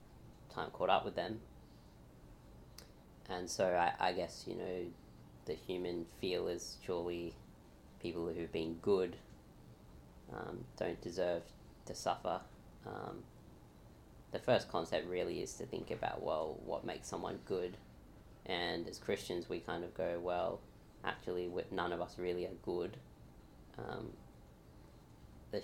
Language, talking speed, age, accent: English, 135 wpm, 20-39, Australian